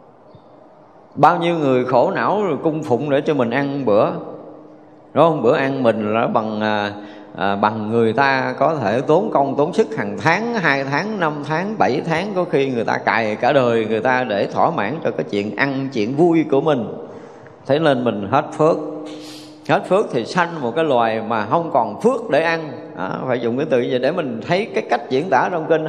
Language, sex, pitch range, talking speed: Vietnamese, male, 125-180 Hz, 205 wpm